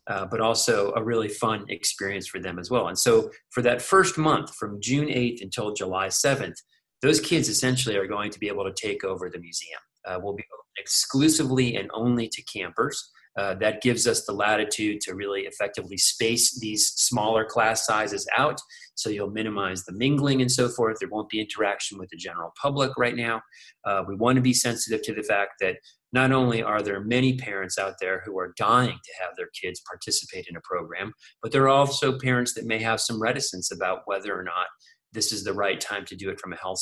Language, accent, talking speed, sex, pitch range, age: English, American, 215 wpm, male, 110-130 Hz, 30-49